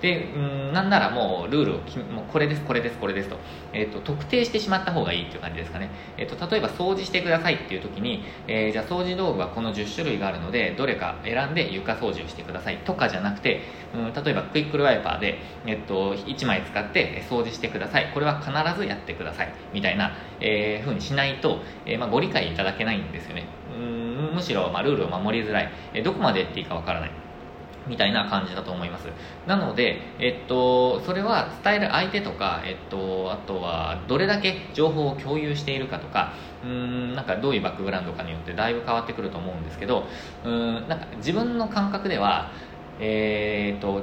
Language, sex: Japanese, male